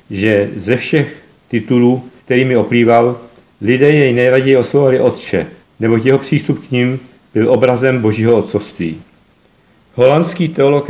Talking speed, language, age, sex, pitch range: 120 wpm, Czech, 50-69, male, 115-135 Hz